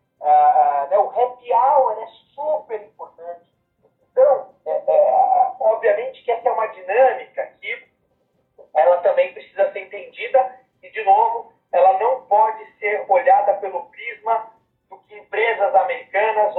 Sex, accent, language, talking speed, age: male, Brazilian, Portuguese, 140 wpm, 40-59